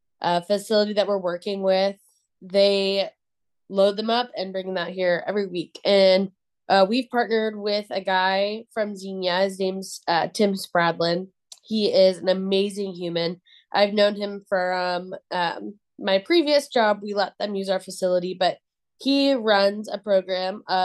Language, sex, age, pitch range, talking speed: English, female, 20-39, 185-210 Hz, 160 wpm